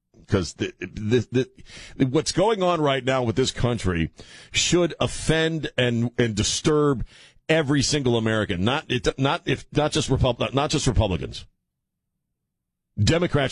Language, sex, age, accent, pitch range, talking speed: English, male, 50-69, American, 90-140 Hz, 130 wpm